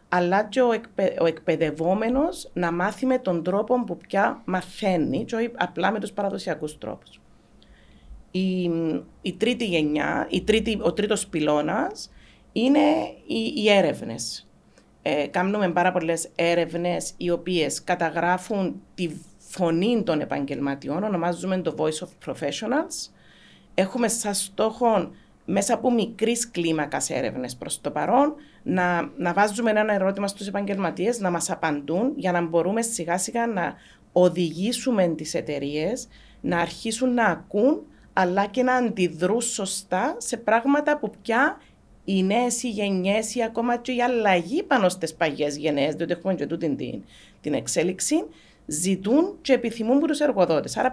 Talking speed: 135 wpm